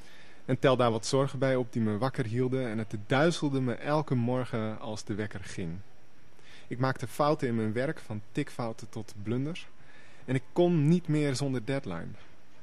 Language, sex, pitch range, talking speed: Dutch, male, 115-150 Hz, 180 wpm